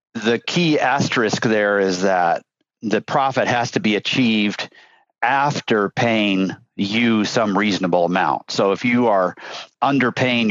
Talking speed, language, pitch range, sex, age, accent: 130 wpm, English, 95-120 Hz, male, 50-69, American